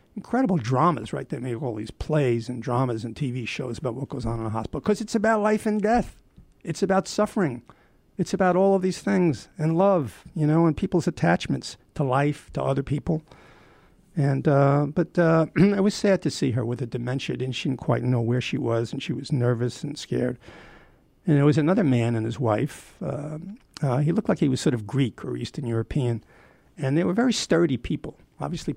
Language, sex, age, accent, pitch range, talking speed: English, male, 50-69, American, 125-170 Hz, 210 wpm